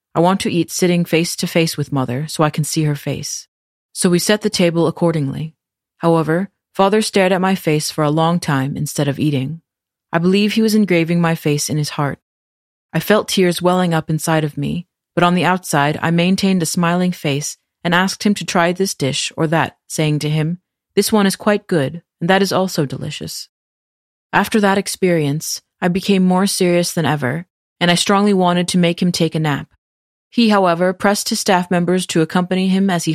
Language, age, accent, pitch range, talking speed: English, 30-49, American, 150-185 Hz, 205 wpm